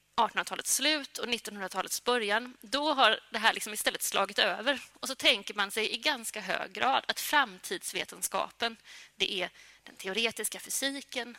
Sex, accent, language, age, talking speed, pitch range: female, native, Swedish, 30-49, 160 wpm, 210-255 Hz